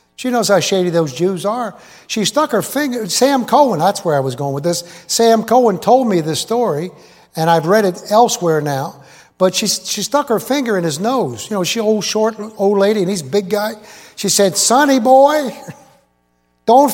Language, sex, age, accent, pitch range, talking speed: English, male, 60-79, American, 155-210 Hz, 205 wpm